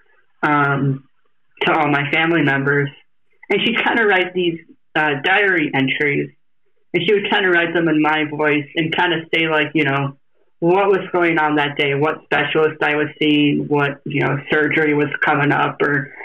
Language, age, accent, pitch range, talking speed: English, 30-49, American, 140-170 Hz, 190 wpm